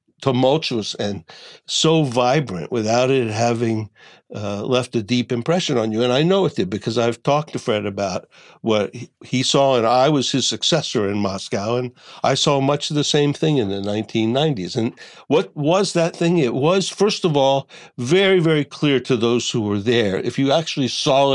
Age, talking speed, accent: 60-79, 190 wpm, American